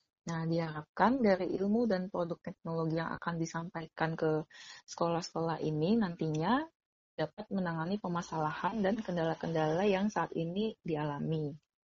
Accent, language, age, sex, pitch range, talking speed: native, Indonesian, 20-39, female, 160-195 Hz, 120 wpm